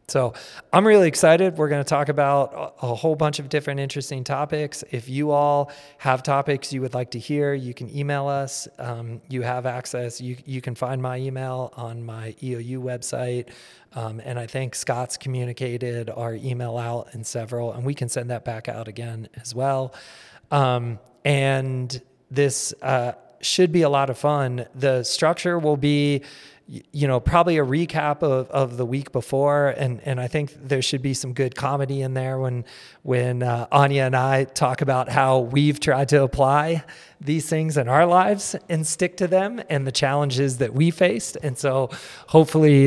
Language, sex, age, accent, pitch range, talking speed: English, male, 30-49, American, 125-145 Hz, 185 wpm